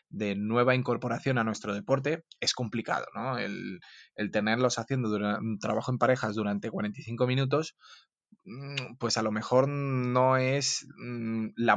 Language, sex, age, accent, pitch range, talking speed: Spanish, male, 20-39, Spanish, 110-130 Hz, 140 wpm